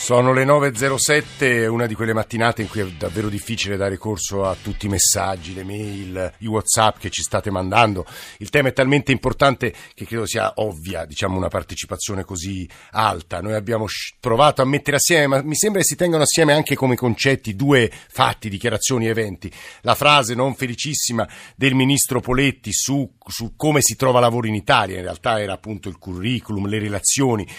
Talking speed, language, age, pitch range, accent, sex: 180 wpm, Italian, 50-69, 105-135 Hz, native, male